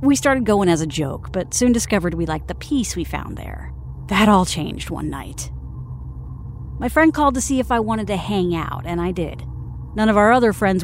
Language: English